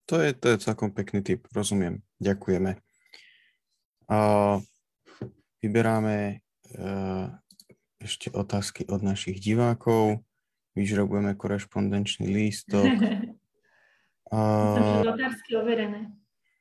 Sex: male